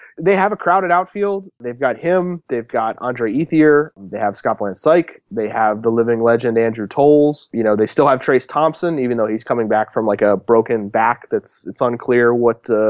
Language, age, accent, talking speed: English, 30-49, American, 205 wpm